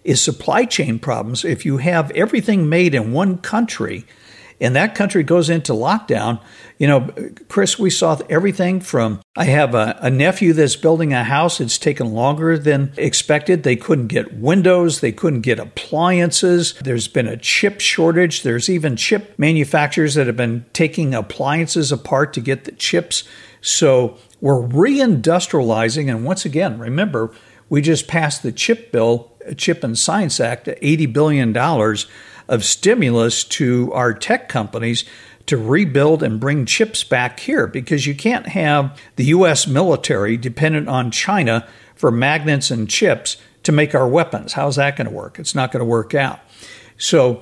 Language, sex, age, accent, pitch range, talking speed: English, male, 60-79, American, 120-170 Hz, 160 wpm